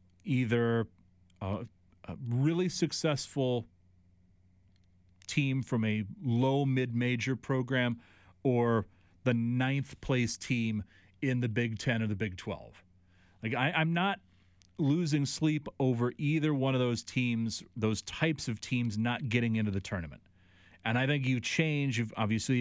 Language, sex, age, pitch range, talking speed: English, male, 30-49, 95-135 Hz, 140 wpm